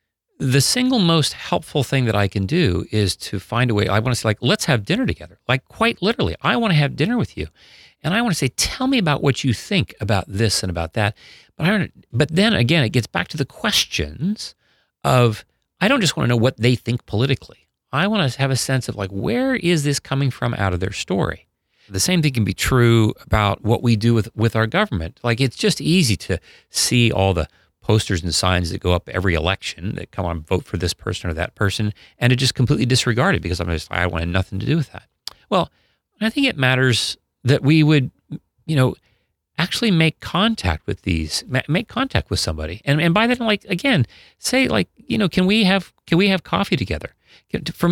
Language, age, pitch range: English, 40-59, 100-155 Hz